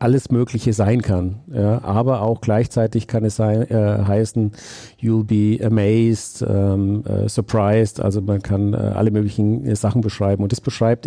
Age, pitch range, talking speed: 50-69, 105-115 Hz, 165 wpm